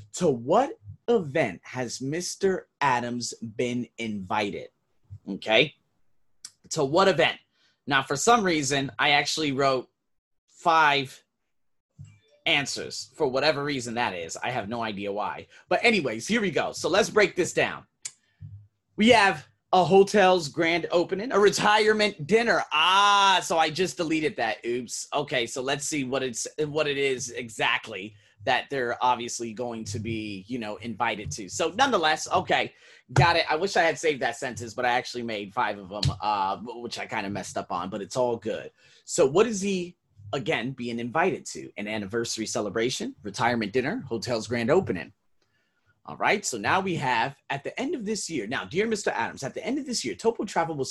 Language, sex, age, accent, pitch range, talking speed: English, male, 30-49, American, 115-170 Hz, 175 wpm